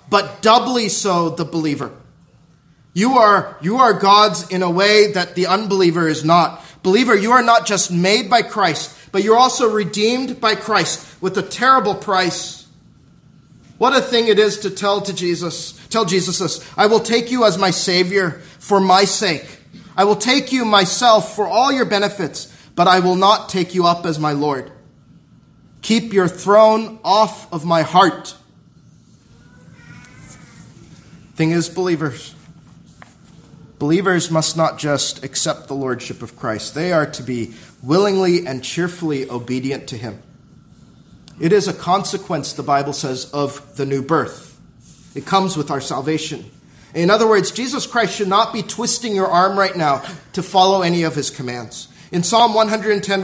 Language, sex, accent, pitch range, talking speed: English, male, American, 160-205 Hz, 160 wpm